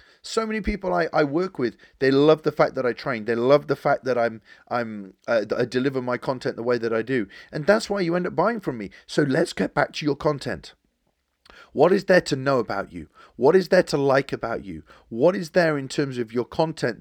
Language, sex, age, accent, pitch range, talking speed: English, male, 40-59, British, 130-175 Hz, 235 wpm